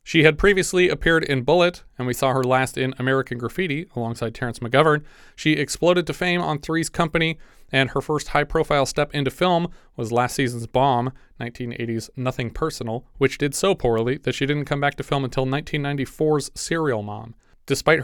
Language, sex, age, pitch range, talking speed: English, male, 30-49, 120-155 Hz, 180 wpm